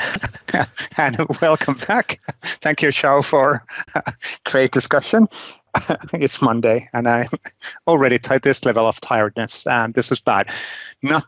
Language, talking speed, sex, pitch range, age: English, 135 wpm, male, 115-150 Hz, 30-49